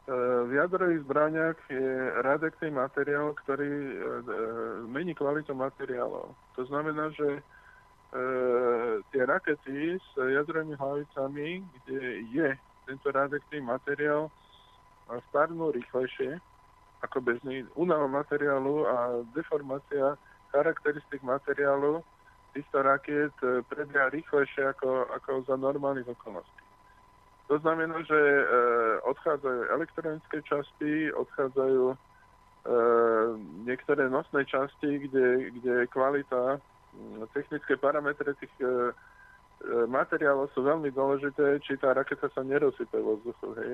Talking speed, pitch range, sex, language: 95 wpm, 130-150 Hz, male, Slovak